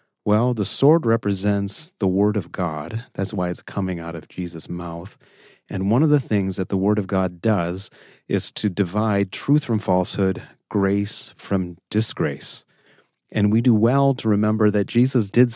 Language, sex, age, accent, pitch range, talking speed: English, male, 30-49, American, 95-115 Hz, 175 wpm